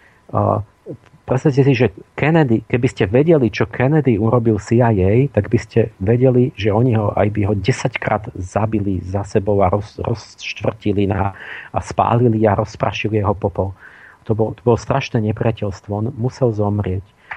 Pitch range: 105-135 Hz